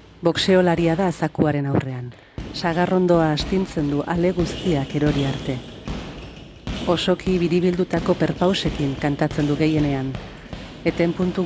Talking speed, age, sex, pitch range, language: 100 wpm, 40-59, female, 140-170 Hz, English